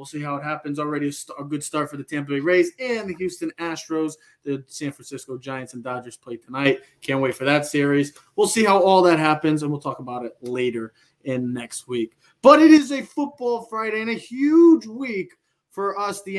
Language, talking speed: English, 215 wpm